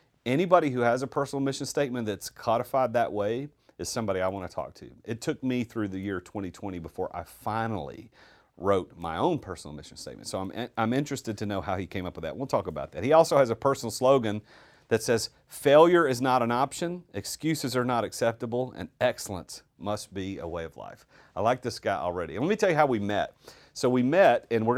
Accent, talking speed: American, 230 wpm